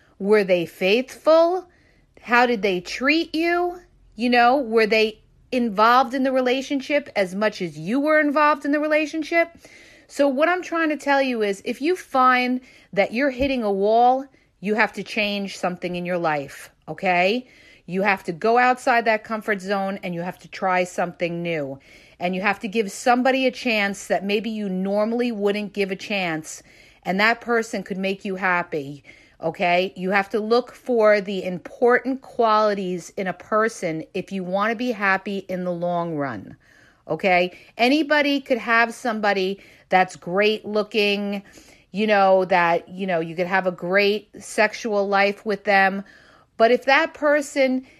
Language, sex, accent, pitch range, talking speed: English, female, American, 195-250 Hz, 170 wpm